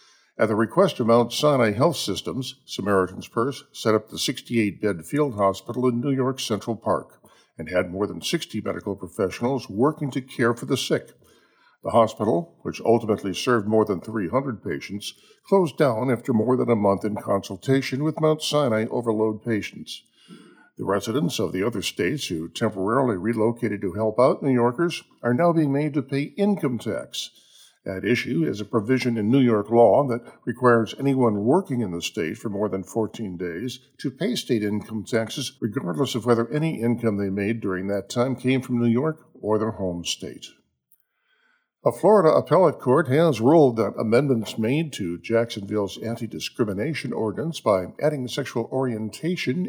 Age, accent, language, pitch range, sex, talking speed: 50-69, American, English, 110-140 Hz, male, 170 wpm